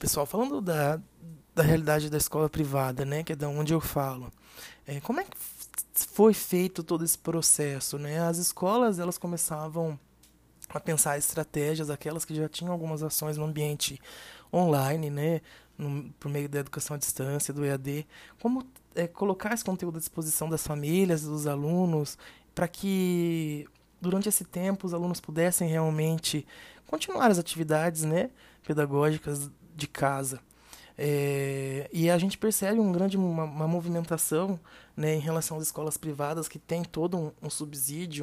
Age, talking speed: 20-39, 155 wpm